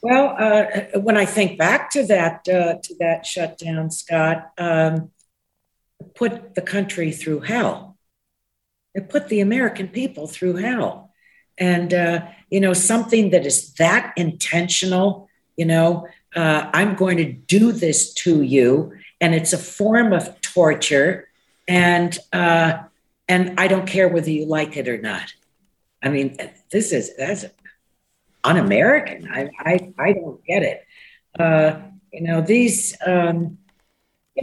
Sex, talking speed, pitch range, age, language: female, 130 wpm, 170-210 Hz, 60-79, English